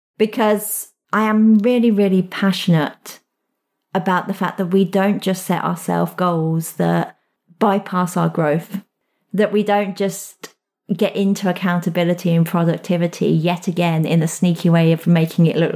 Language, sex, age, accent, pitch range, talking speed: English, female, 30-49, British, 170-205 Hz, 150 wpm